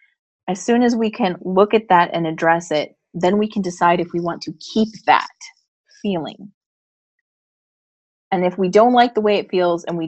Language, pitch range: English, 175-220 Hz